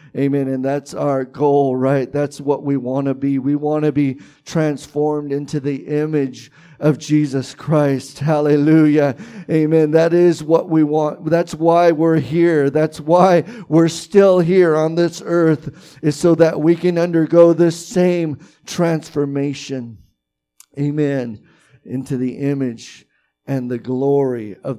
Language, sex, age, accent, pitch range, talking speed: English, male, 50-69, American, 130-155 Hz, 145 wpm